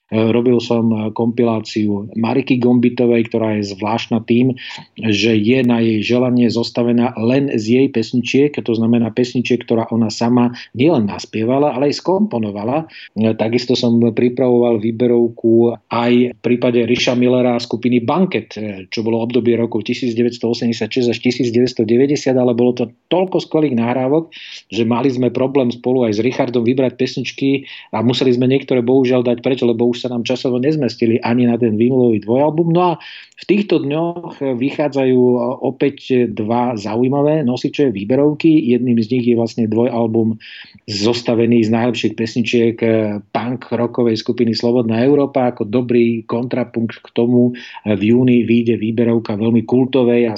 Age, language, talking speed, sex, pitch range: 40-59, Slovak, 145 wpm, male, 115-130 Hz